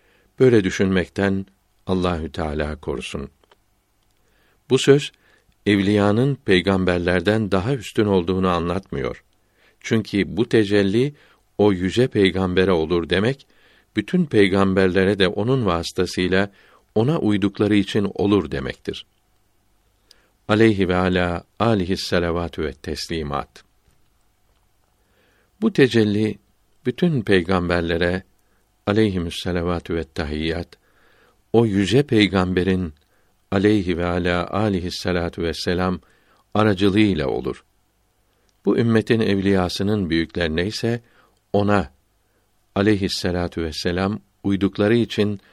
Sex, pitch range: male, 90-105 Hz